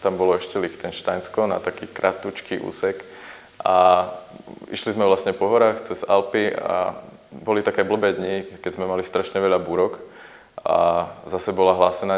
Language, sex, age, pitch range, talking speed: Slovak, male, 20-39, 90-100 Hz, 155 wpm